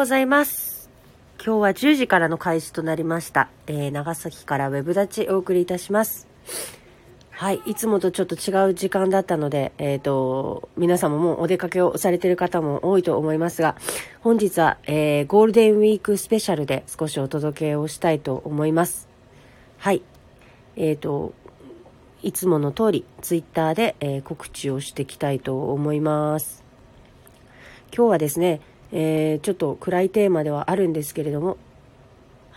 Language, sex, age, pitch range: Japanese, female, 40-59, 145-180 Hz